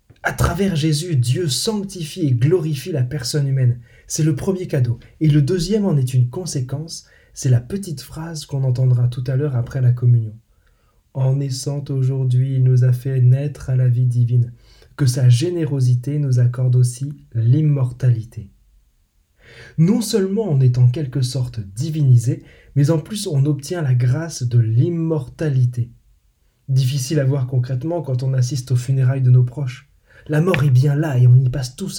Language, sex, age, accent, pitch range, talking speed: French, male, 20-39, French, 125-155 Hz, 170 wpm